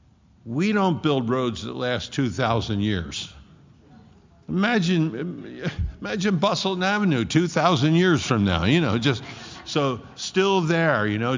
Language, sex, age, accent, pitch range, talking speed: English, male, 60-79, American, 110-150 Hz, 135 wpm